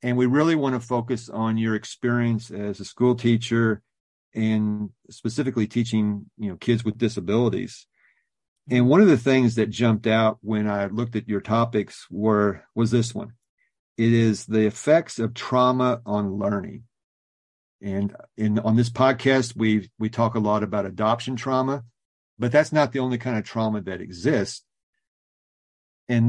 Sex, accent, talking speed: male, American, 160 wpm